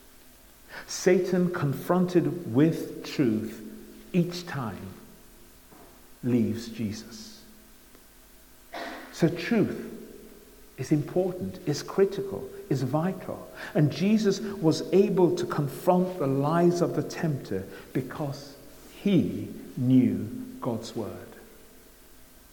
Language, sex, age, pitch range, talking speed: English, male, 60-79, 125-175 Hz, 85 wpm